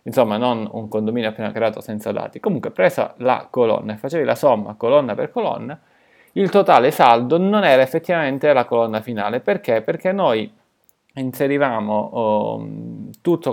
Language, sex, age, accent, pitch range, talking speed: Italian, male, 30-49, native, 110-135 Hz, 145 wpm